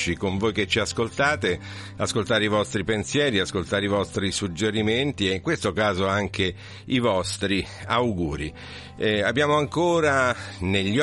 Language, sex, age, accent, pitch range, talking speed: Italian, male, 50-69, native, 90-105 Hz, 135 wpm